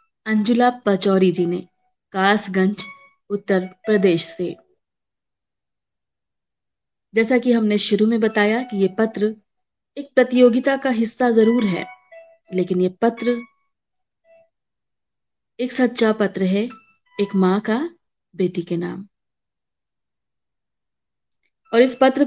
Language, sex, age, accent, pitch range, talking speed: Hindi, female, 20-39, native, 190-245 Hz, 105 wpm